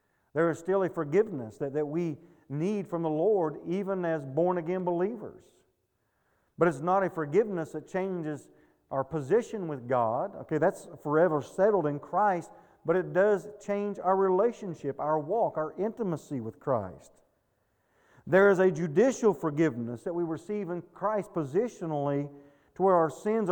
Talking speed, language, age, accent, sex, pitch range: 155 wpm, English, 40-59, American, male, 145-185 Hz